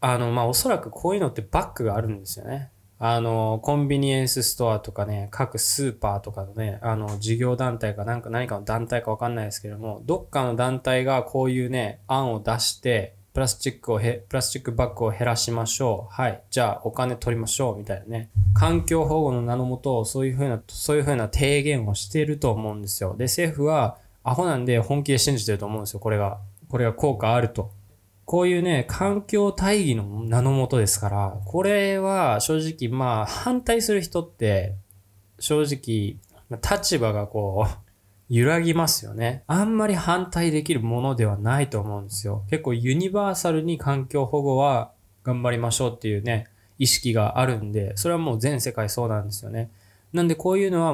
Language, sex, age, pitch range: Japanese, male, 20-39, 105-140 Hz